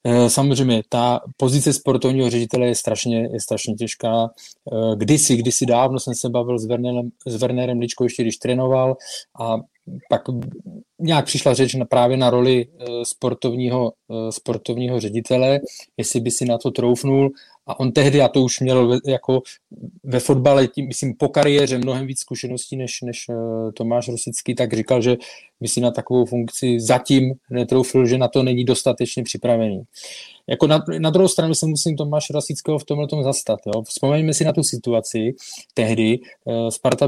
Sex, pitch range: male, 120-135 Hz